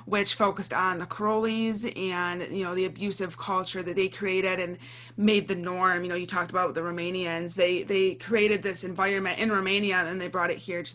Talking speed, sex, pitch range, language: 210 wpm, female, 175-210 Hz, English